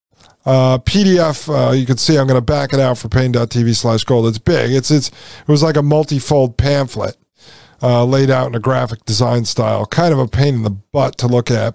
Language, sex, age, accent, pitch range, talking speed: English, male, 50-69, American, 120-165 Hz, 225 wpm